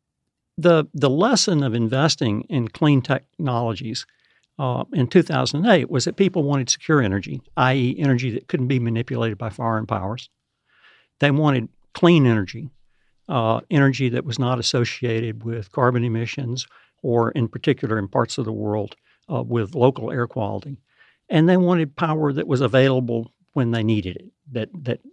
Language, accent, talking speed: English, American, 155 wpm